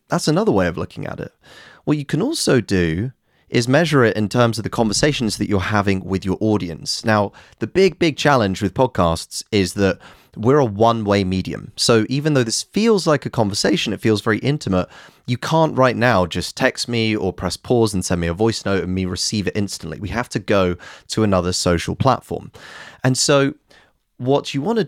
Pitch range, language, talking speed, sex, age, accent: 95-130 Hz, English, 205 wpm, male, 30-49, British